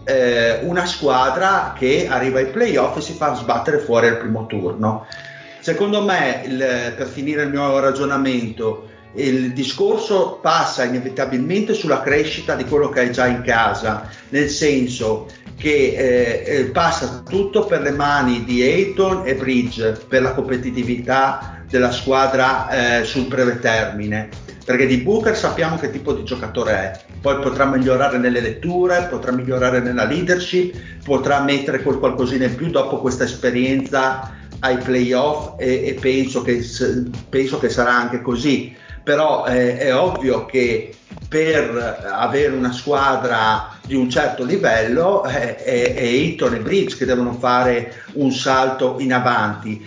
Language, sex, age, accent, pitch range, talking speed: Italian, male, 40-59, native, 120-145 Hz, 145 wpm